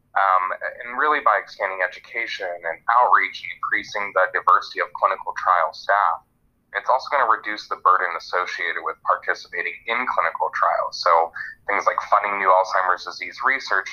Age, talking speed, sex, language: 20-39, 150 wpm, male, English